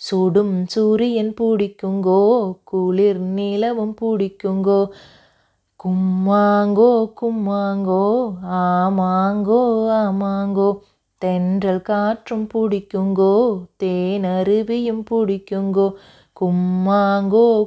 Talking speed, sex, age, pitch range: 55 wpm, female, 30-49, 190-220 Hz